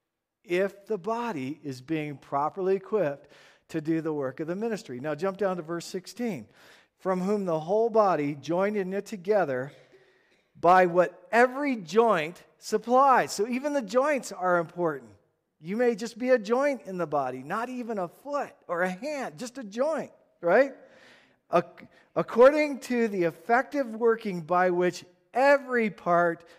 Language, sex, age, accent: English, male, 40-59, American